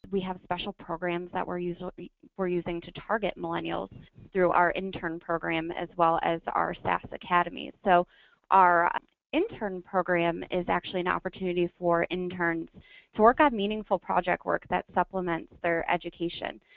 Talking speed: 145 wpm